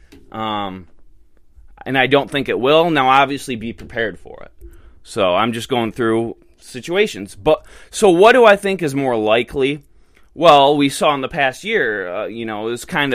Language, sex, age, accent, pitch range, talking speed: English, male, 20-39, American, 110-150 Hz, 185 wpm